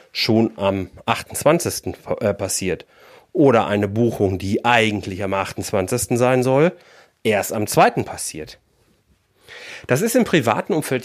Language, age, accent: German, 40-59, German